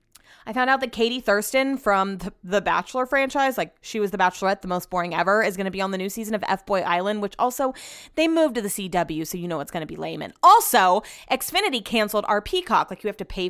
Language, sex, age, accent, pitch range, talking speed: English, female, 20-39, American, 190-245 Hz, 250 wpm